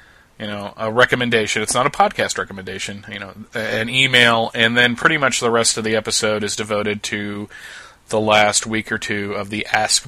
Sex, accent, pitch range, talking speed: male, American, 105-120 Hz, 195 wpm